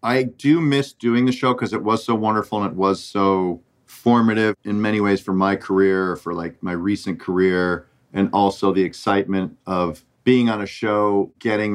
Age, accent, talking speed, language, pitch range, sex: 40-59, American, 190 wpm, English, 95-125 Hz, male